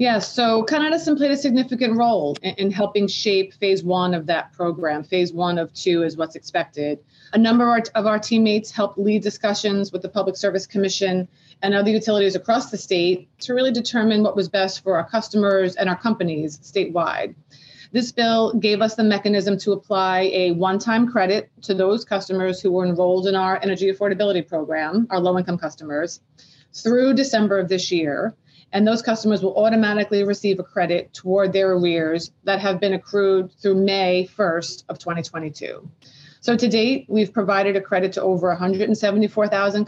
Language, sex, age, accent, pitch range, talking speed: English, female, 30-49, American, 180-210 Hz, 175 wpm